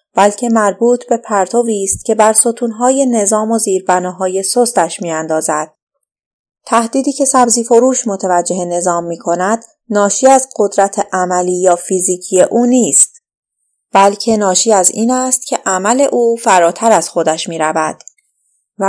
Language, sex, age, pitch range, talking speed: Persian, female, 30-49, 180-235 Hz, 135 wpm